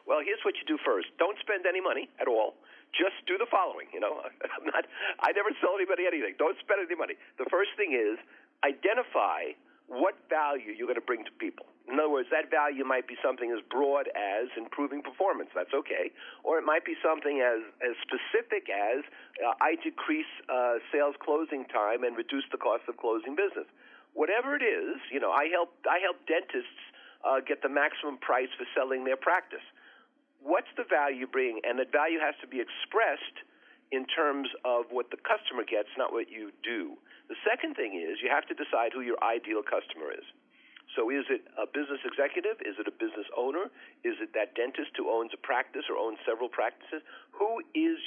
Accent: American